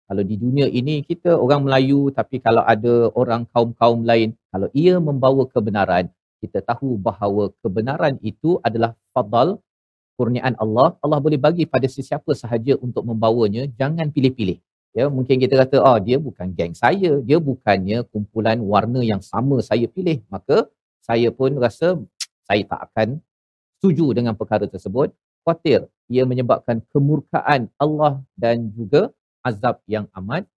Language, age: Malayalam, 40-59